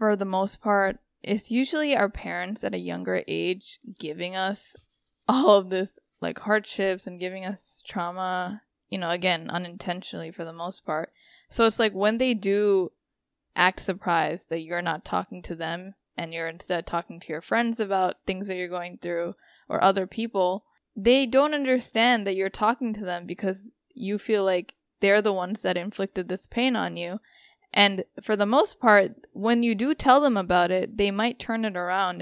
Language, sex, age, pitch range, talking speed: English, female, 10-29, 180-220 Hz, 185 wpm